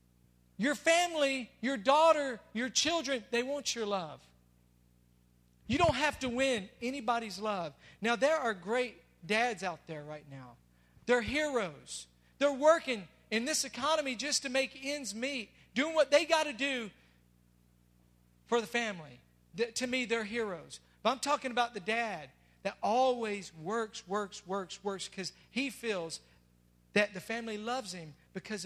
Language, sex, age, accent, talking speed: English, male, 50-69, American, 150 wpm